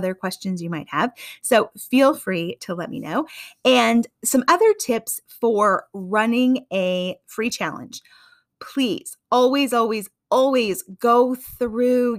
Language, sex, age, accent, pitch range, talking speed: English, female, 30-49, American, 200-270 Hz, 135 wpm